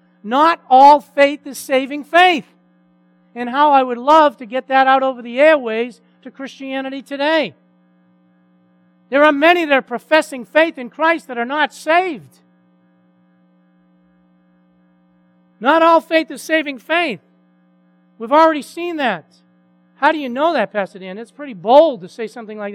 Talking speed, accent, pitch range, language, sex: 155 wpm, American, 165-265 Hz, English, male